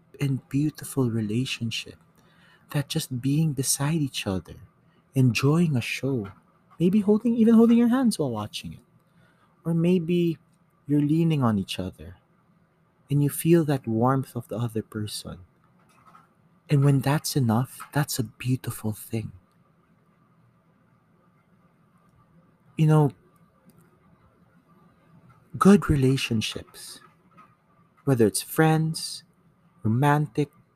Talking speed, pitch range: 105 wpm, 130-170 Hz